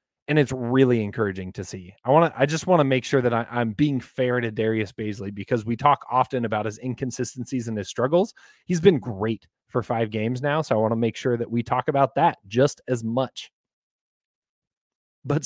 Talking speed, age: 210 wpm, 30-49